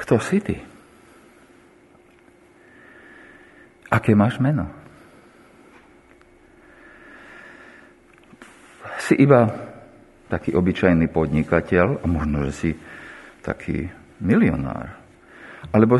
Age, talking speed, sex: 50-69, 70 wpm, male